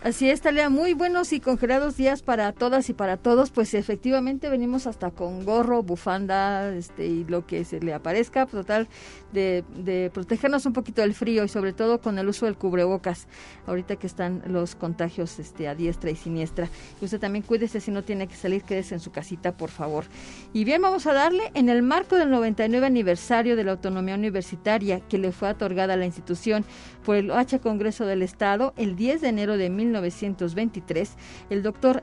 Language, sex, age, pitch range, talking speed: Spanish, female, 40-59, 195-250 Hz, 195 wpm